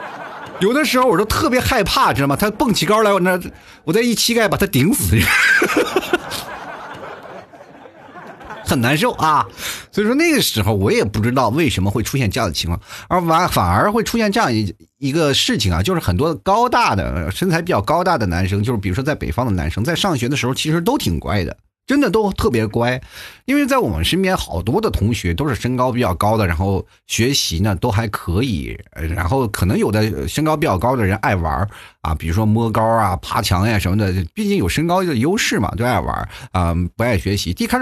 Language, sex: Chinese, male